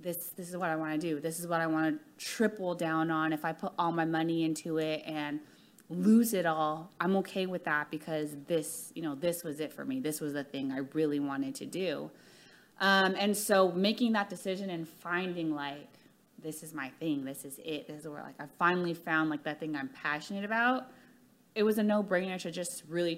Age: 20-39